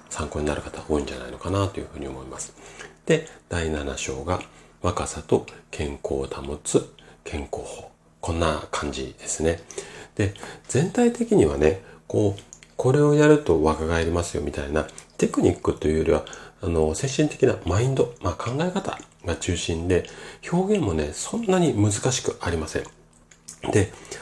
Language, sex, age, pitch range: Japanese, male, 40-59, 75-120 Hz